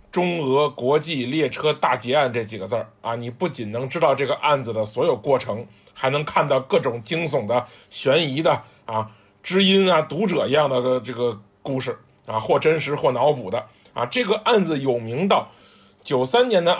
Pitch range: 125-180 Hz